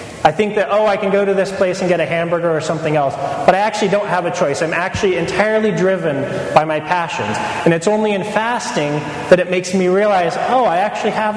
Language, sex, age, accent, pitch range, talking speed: English, male, 30-49, American, 160-195 Hz, 240 wpm